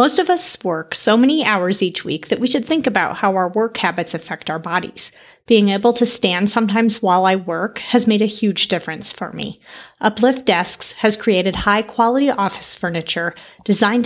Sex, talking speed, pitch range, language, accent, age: female, 190 wpm, 180-235 Hz, English, American, 30-49